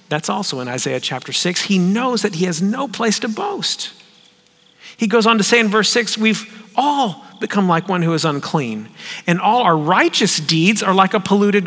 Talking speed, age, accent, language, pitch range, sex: 205 wpm, 40-59, American, English, 165-220 Hz, male